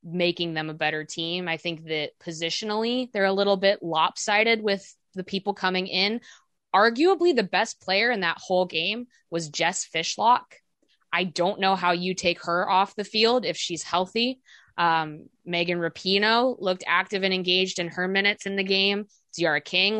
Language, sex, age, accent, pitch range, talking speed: English, female, 20-39, American, 170-205 Hz, 175 wpm